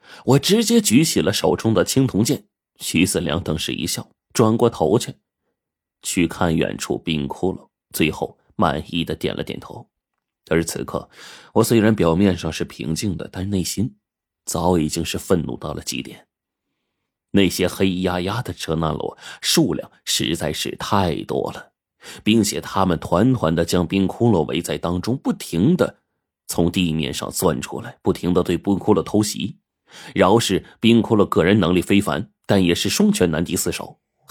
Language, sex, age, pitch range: Chinese, male, 30-49, 85-110 Hz